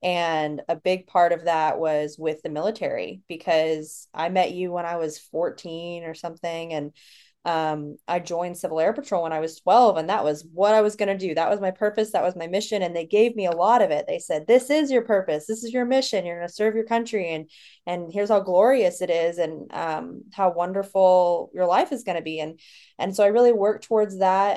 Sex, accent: female, American